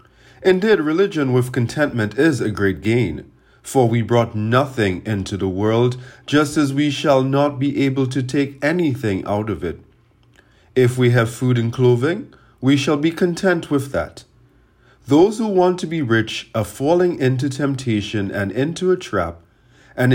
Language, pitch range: English, 100-140 Hz